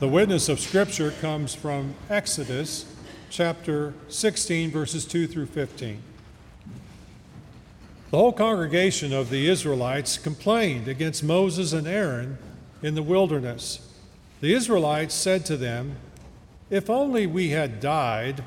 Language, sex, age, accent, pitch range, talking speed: English, male, 50-69, American, 140-180 Hz, 120 wpm